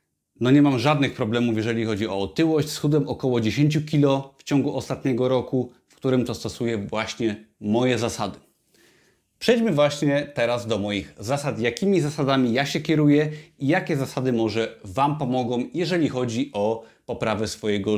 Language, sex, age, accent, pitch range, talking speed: Polish, male, 30-49, native, 115-150 Hz, 155 wpm